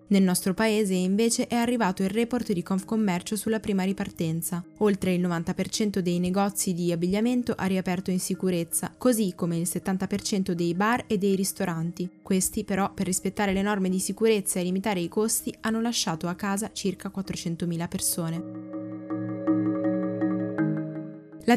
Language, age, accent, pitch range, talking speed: Italian, 10-29, native, 180-220 Hz, 145 wpm